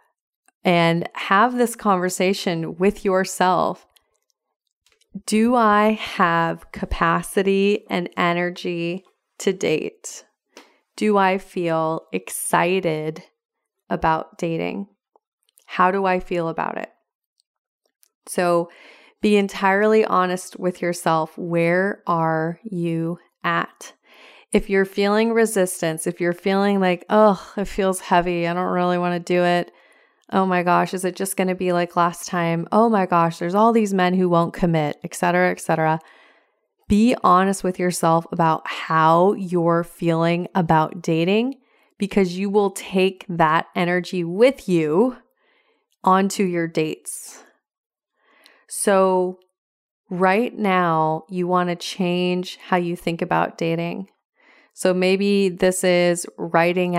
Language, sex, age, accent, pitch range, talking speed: English, female, 30-49, American, 170-200 Hz, 125 wpm